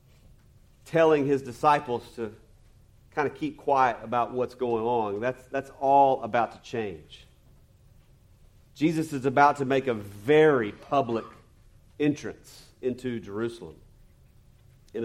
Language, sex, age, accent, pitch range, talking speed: English, male, 40-59, American, 115-150 Hz, 120 wpm